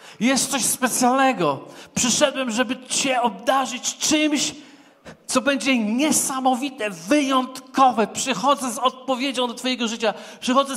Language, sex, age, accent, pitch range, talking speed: Polish, male, 40-59, native, 215-265 Hz, 105 wpm